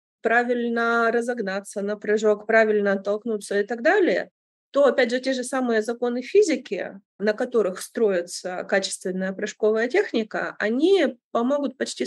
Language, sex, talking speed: Russian, female, 130 wpm